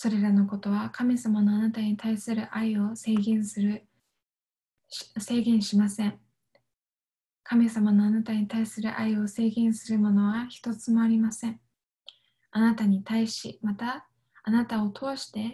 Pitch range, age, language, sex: 205-230 Hz, 20-39, Japanese, female